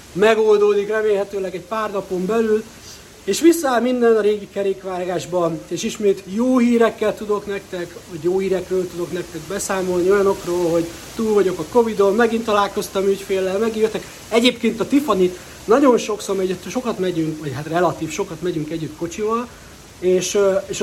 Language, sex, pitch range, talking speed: Hungarian, male, 170-210 Hz, 145 wpm